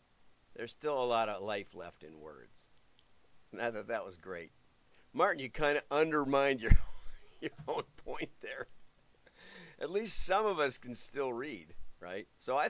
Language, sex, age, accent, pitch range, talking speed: English, male, 50-69, American, 110-140 Hz, 170 wpm